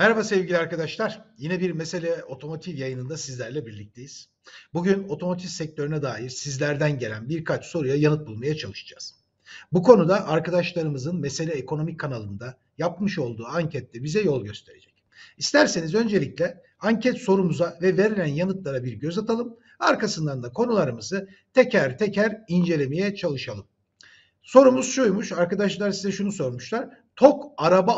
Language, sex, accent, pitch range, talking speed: Turkish, male, native, 140-215 Hz, 125 wpm